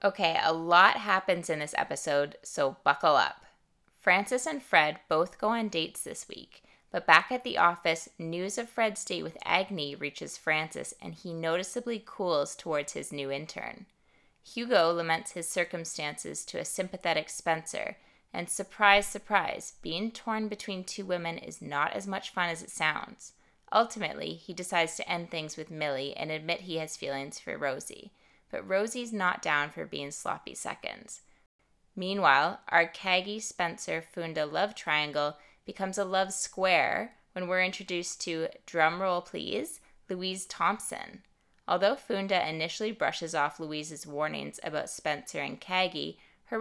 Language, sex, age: English, female, 20-39